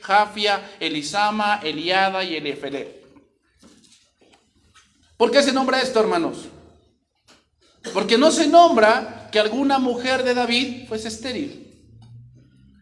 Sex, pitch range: male, 195-275 Hz